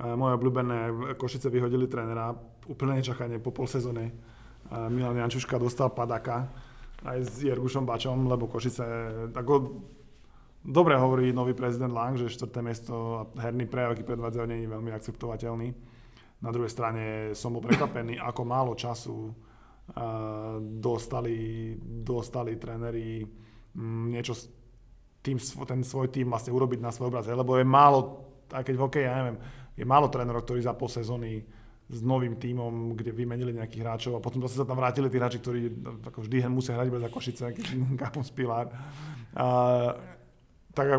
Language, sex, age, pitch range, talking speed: Slovak, male, 20-39, 115-130 Hz, 140 wpm